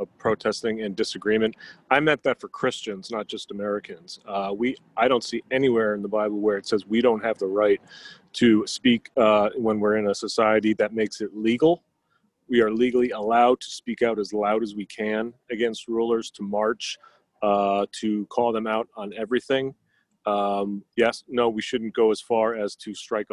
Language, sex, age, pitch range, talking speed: English, male, 30-49, 105-120 Hz, 195 wpm